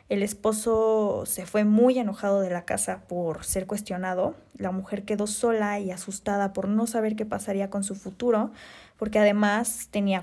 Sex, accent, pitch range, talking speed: female, Mexican, 200-220 Hz, 170 wpm